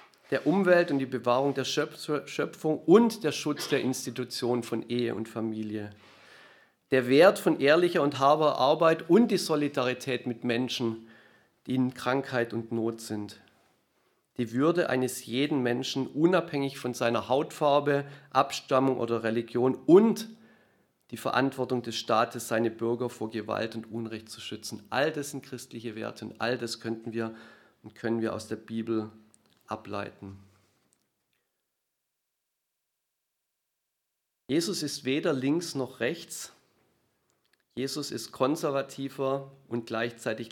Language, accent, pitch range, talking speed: German, German, 115-145 Hz, 130 wpm